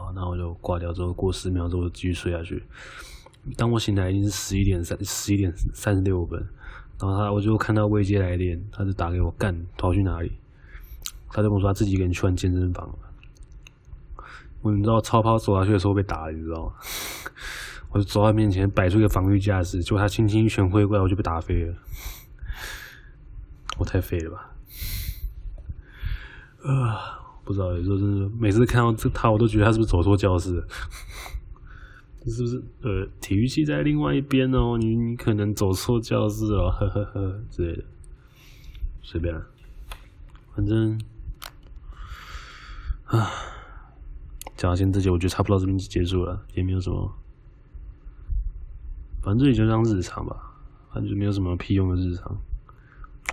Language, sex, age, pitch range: Chinese, male, 20-39, 85-105 Hz